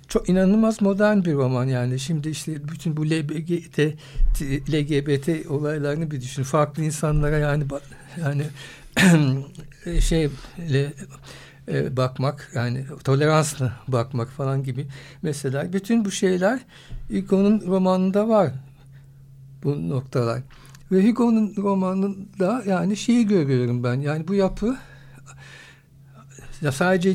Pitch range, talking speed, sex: 135-170 Hz, 105 wpm, male